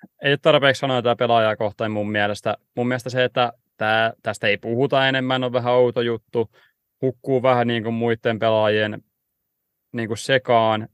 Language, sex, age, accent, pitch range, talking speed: Finnish, male, 20-39, native, 110-125 Hz, 155 wpm